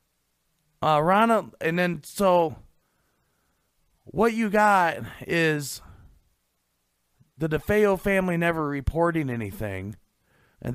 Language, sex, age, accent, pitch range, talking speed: English, male, 40-59, American, 125-170 Hz, 90 wpm